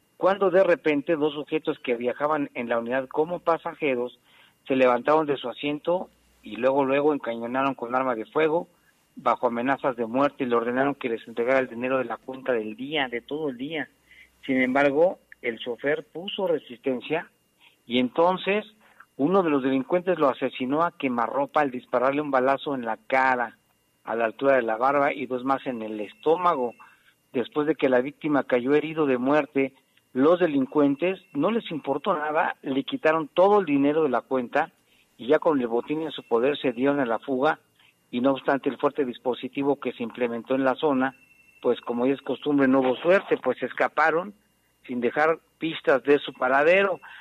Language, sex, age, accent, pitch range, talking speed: Spanish, male, 50-69, Mexican, 125-155 Hz, 185 wpm